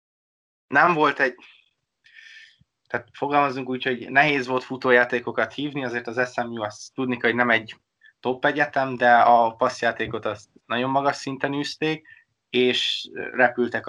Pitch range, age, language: 115-130 Hz, 20-39, Hungarian